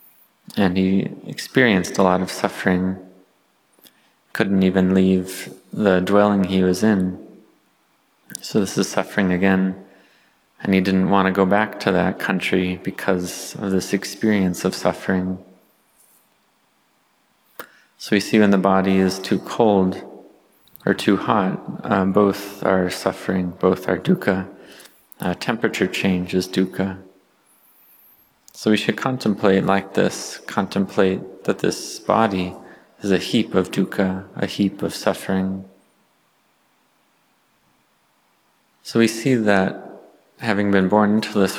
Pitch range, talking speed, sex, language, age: 95-100 Hz, 125 wpm, male, English, 30-49